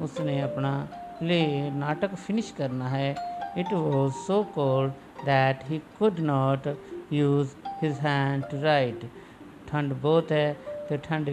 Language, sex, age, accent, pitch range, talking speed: English, male, 50-69, Indian, 130-155 Hz, 130 wpm